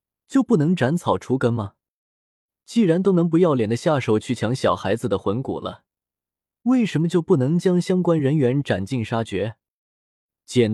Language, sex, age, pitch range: Chinese, male, 20-39, 110-160 Hz